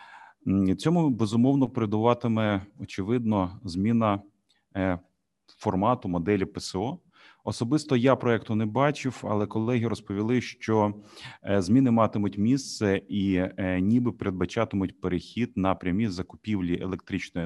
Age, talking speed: 30-49, 95 wpm